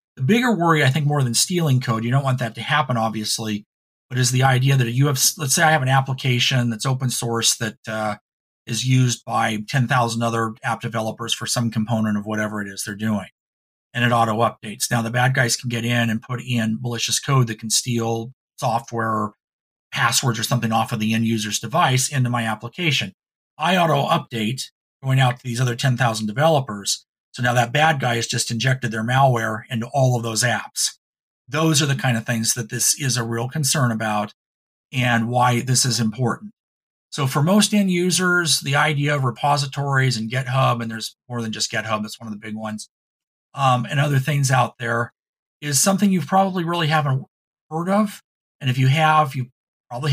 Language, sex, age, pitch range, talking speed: English, male, 40-59, 115-140 Hz, 200 wpm